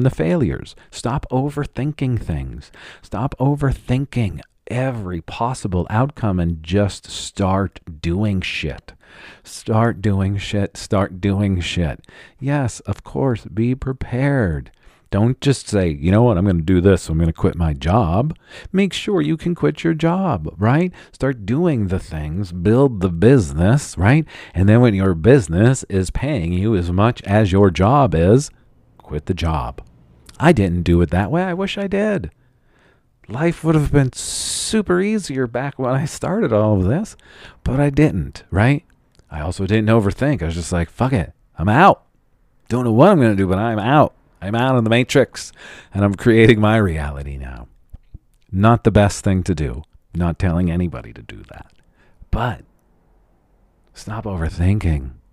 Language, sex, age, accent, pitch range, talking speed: English, male, 40-59, American, 85-130 Hz, 165 wpm